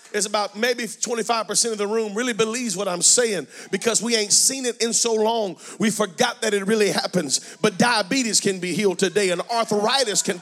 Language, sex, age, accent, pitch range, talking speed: English, male, 40-59, American, 195-245 Hz, 200 wpm